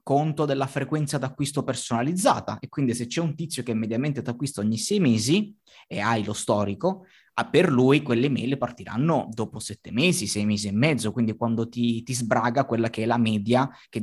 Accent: native